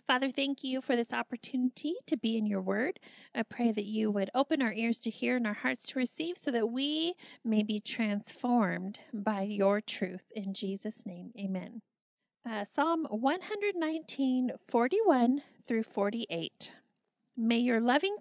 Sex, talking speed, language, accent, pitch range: female, 160 wpm, English, American, 205-255 Hz